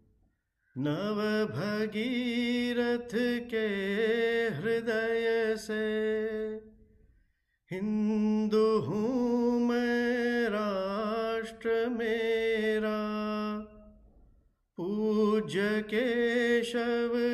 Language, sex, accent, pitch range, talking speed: Hindi, male, native, 145-220 Hz, 35 wpm